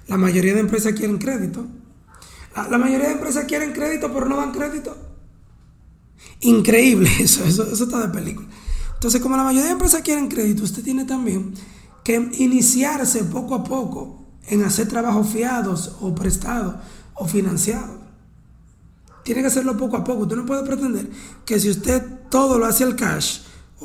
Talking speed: 170 wpm